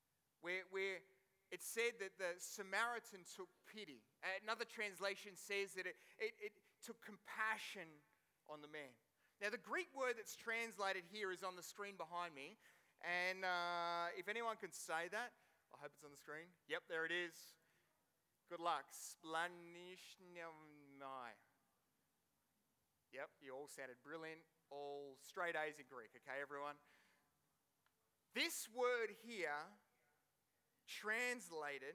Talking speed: 130 wpm